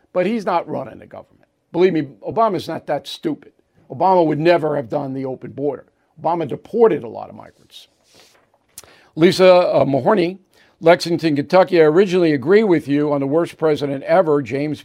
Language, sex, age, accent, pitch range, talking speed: English, male, 50-69, American, 145-175 Hz, 170 wpm